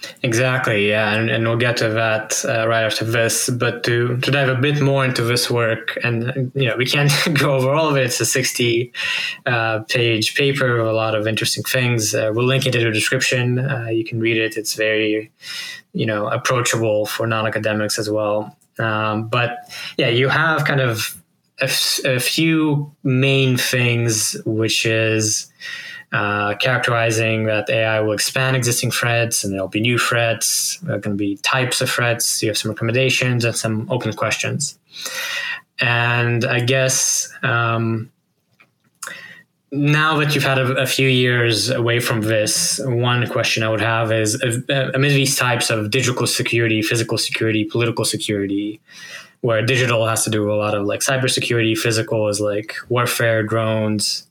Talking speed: 170 wpm